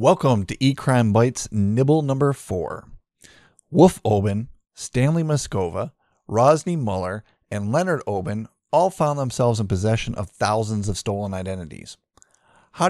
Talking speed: 125 wpm